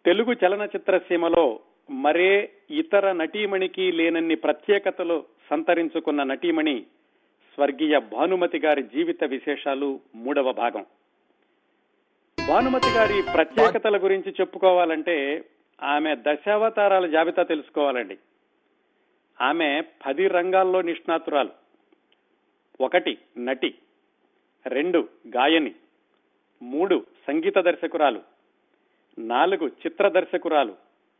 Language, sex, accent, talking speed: Telugu, male, native, 80 wpm